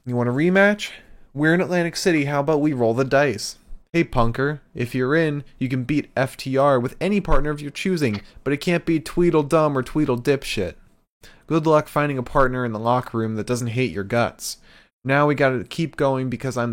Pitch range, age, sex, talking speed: 105-140 Hz, 20-39, male, 205 wpm